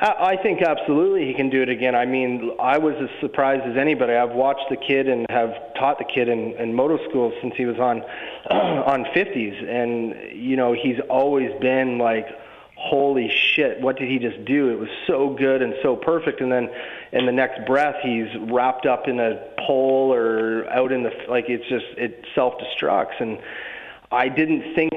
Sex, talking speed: male, 195 wpm